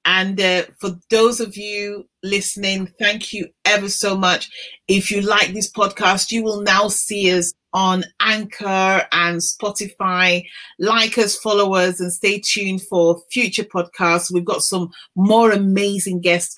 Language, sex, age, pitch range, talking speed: English, female, 30-49, 170-205 Hz, 150 wpm